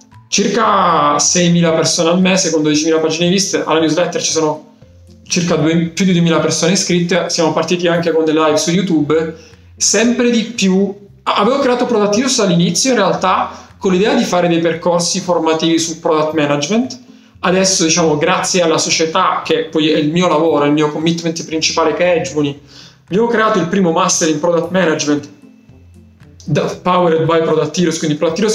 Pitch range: 155-185 Hz